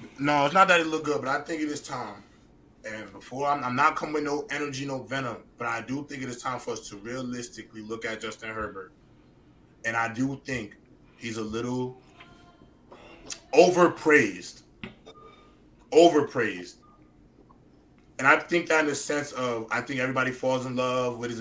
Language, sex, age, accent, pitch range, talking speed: English, male, 20-39, American, 120-155 Hz, 180 wpm